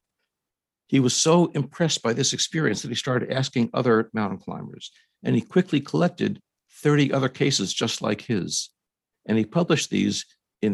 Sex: male